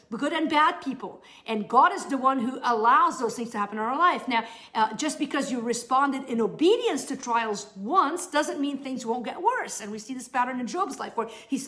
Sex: female